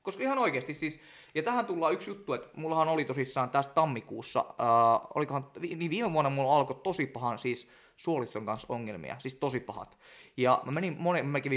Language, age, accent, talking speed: Finnish, 20-39, native, 180 wpm